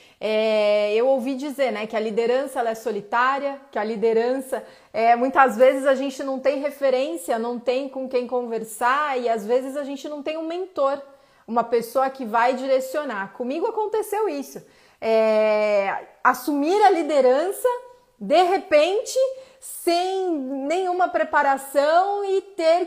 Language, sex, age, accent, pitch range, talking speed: Portuguese, female, 30-49, Brazilian, 235-315 Hz, 145 wpm